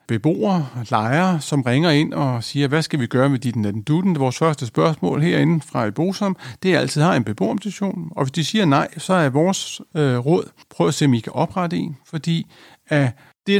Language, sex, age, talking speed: Danish, male, 60-79, 220 wpm